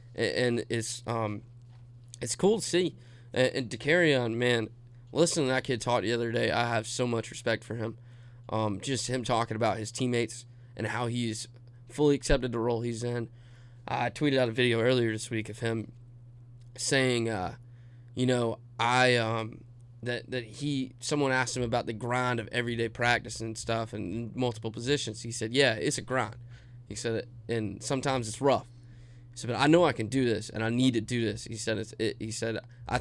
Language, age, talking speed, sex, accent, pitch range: English, 20-39, 205 wpm, male, American, 115-130 Hz